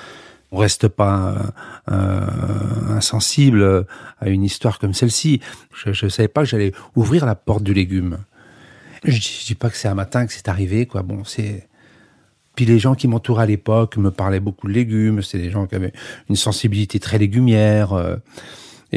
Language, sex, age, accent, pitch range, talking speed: French, male, 50-69, French, 100-125 Hz, 185 wpm